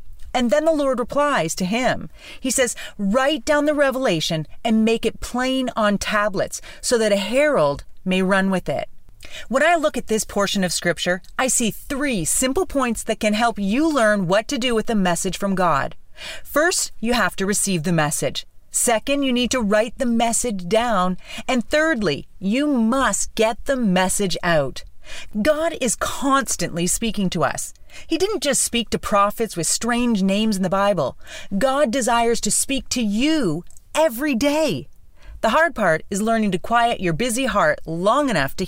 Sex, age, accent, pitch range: female, 40-59, American, 185-260 Hz